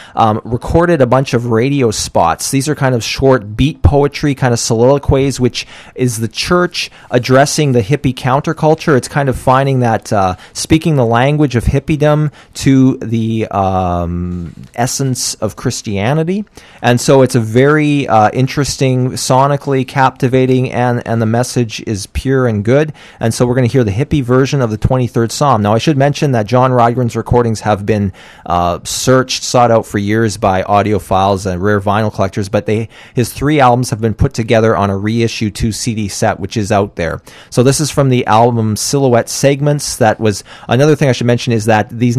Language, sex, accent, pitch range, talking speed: English, male, American, 105-130 Hz, 185 wpm